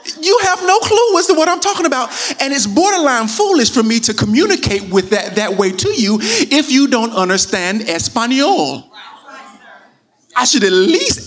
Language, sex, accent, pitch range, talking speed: English, male, American, 210-305 Hz, 175 wpm